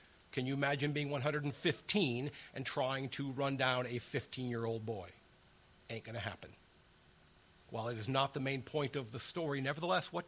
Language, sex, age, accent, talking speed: English, male, 50-69, American, 170 wpm